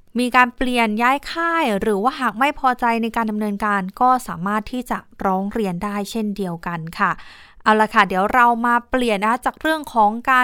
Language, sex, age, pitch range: Thai, female, 20-39, 210-255 Hz